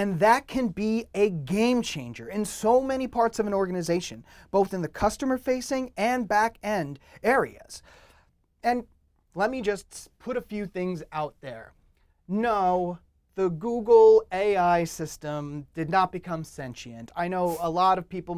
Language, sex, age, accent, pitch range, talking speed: English, male, 30-49, American, 155-215 Hz, 145 wpm